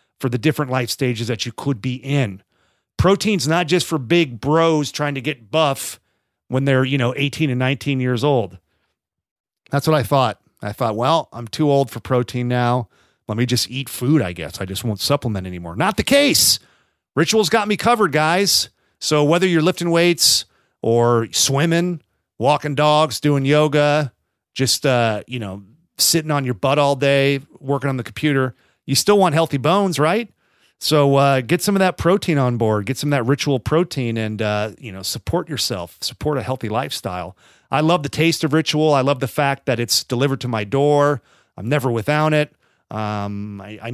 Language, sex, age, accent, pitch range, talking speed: English, male, 40-59, American, 115-155 Hz, 195 wpm